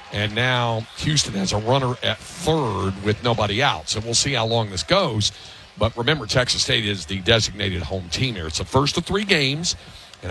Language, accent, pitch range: English, American, 95-135 Hz